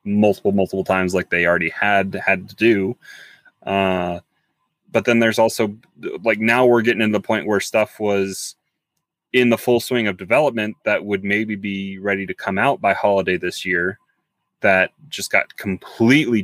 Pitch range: 95-115 Hz